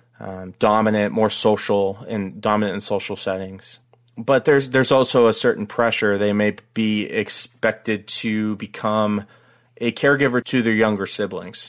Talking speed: 145 wpm